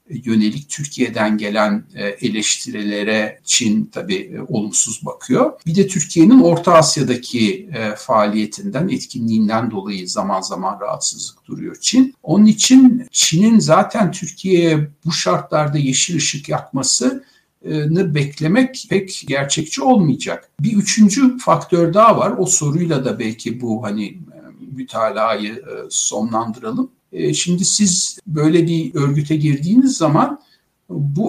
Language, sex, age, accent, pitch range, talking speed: Turkish, male, 60-79, native, 130-205 Hz, 105 wpm